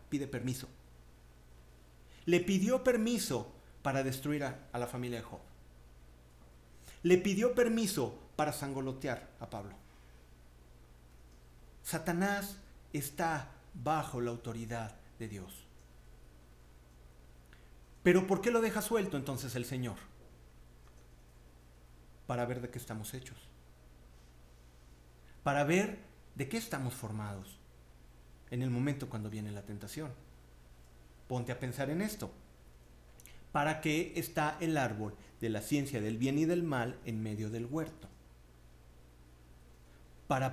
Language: Spanish